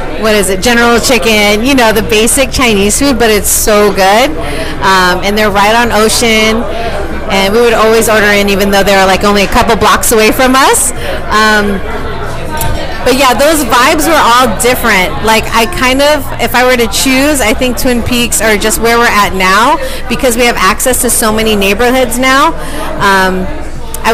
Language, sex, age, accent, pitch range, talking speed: English, female, 30-49, American, 195-240 Hz, 190 wpm